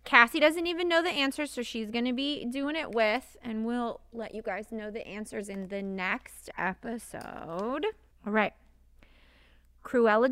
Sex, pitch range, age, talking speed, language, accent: female, 180-255 Hz, 30-49, 170 wpm, English, American